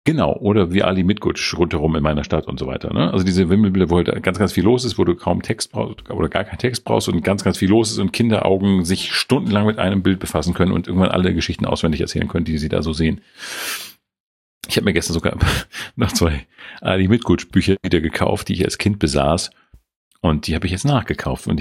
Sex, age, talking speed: male, 40-59, 235 wpm